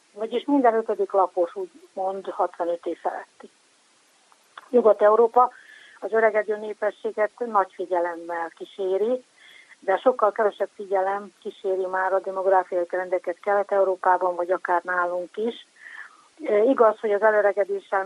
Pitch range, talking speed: 185-230 Hz, 115 wpm